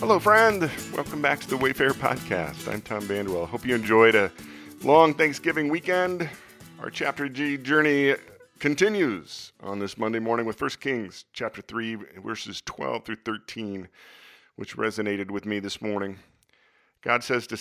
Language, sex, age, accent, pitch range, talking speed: English, male, 40-59, American, 90-115 Hz, 155 wpm